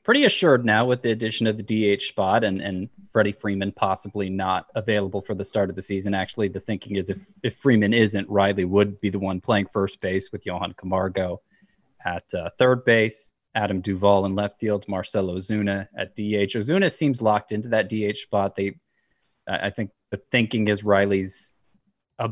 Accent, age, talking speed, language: American, 20-39, 190 wpm, English